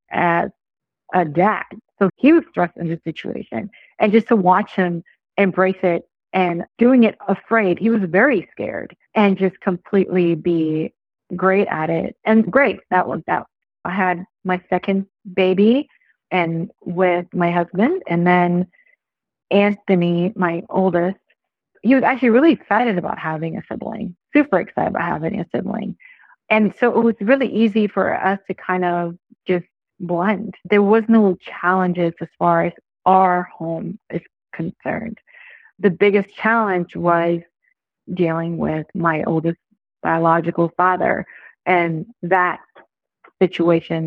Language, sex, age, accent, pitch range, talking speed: English, female, 40-59, American, 175-210 Hz, 140 wpm